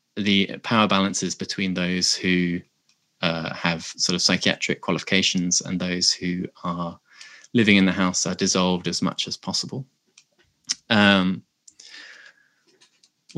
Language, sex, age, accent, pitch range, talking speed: English, male, 20-39, British, 90-105 Hz, 120 wpm